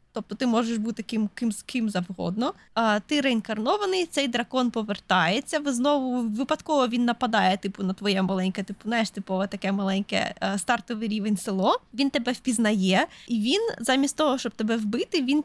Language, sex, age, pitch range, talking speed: Ukrainian, female, 20-39, 215-275 Hz, 165 wpm